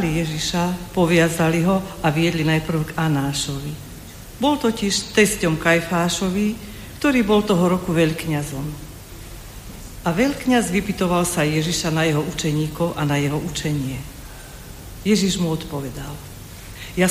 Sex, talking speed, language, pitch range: female, 115 wpm, Slovak, 145-180 Hz